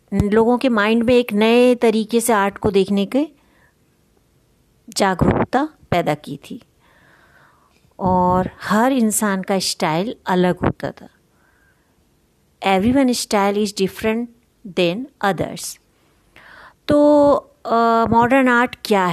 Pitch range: 200-260 Hz